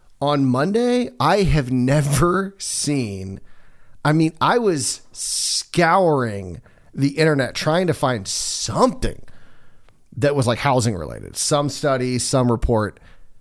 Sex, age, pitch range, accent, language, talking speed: male, 30-49, 120-155 Hz, American, English, 115 wpm